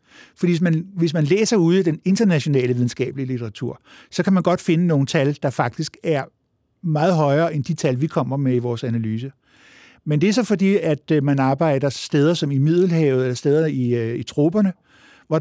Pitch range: 125-160 Hz